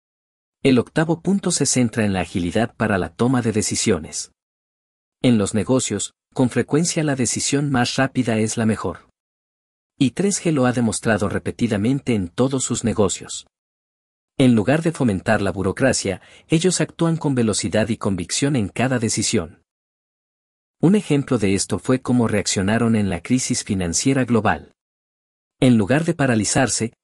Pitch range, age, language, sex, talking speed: 100-130 Hz, 50-69, Spanish, male, 145 wpm